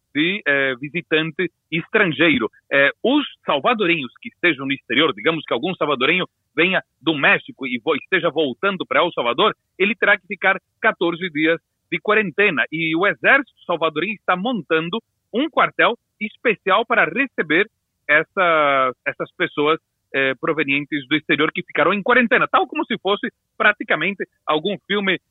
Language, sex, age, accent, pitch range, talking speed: Portuguese, male, 40-59, Brazilian, 155-225 Hz, 145 wpm